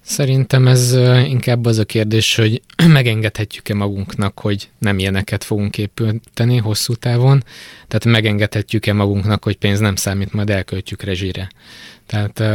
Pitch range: 100-110 Hz